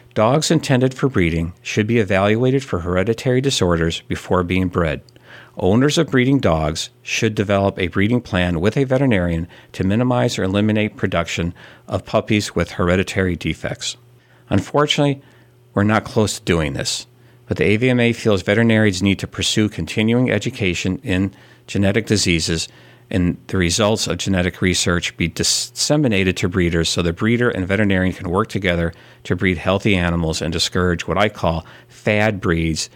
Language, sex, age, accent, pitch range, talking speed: English, male, 50-69, American, 90-120 Hz, 155 wpm